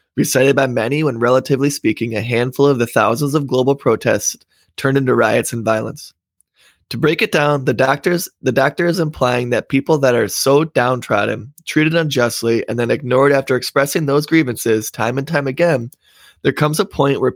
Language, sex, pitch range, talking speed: English, male, 115-145 Hz, 185 wpm